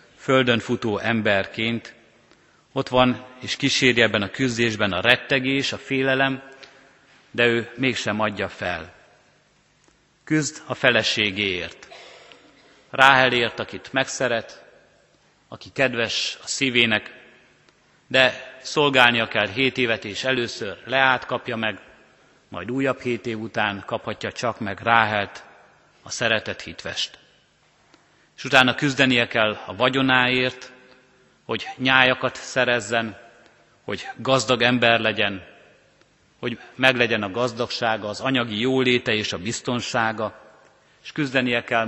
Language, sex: Hungarian, male